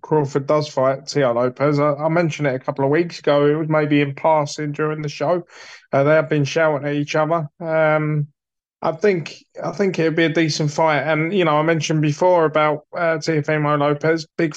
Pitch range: 150-170 Hz